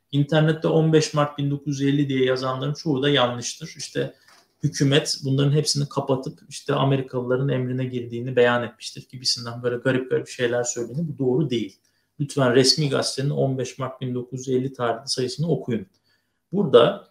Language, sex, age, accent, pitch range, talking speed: Turkish, male, 50-69, native, 125-155 Hz, 135 wpm